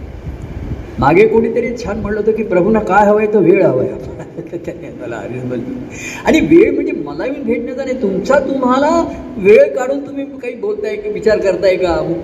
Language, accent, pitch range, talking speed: Marathi, native, 170-280 Hz, 175 wpm